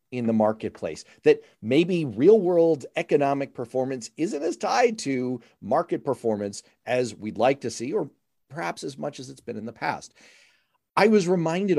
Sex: male